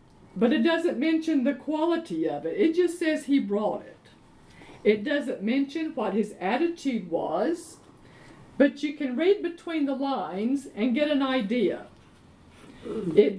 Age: 50-69